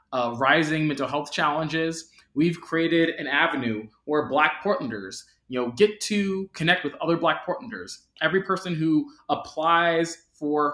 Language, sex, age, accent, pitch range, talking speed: English, male, 20-39, American, 140-170 Hz, 145 wpm